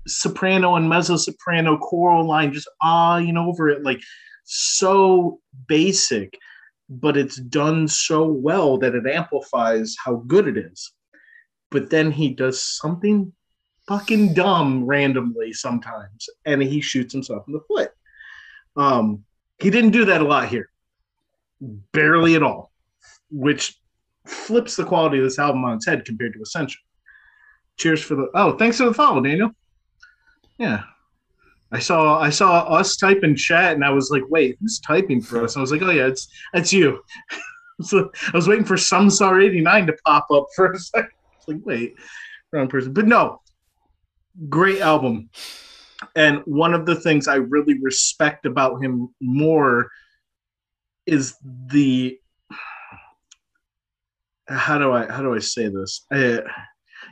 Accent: American